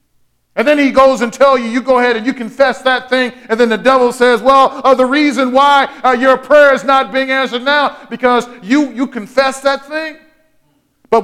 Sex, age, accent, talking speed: male, 40-59, American, 215 wpm